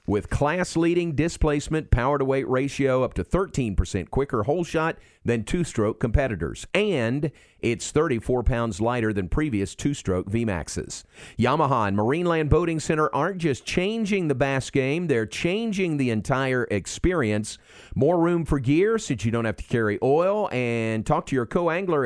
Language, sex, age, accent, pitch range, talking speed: English, male, 50-69, American, 110-165 Hz, 150 wpm